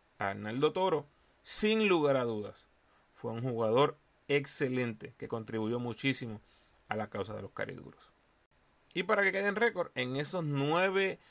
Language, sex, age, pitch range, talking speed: Spanish, male, 30-49, 115-150 Hz, 155 wpm